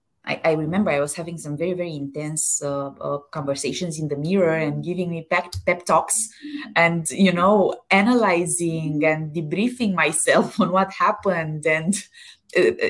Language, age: Romanian, 20-39